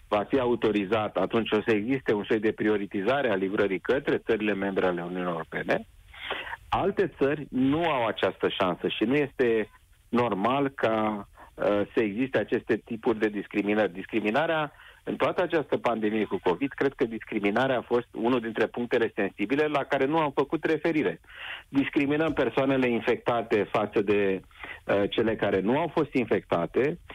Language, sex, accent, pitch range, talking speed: Romanian, male, native, 105-130 Hz, 150 wpm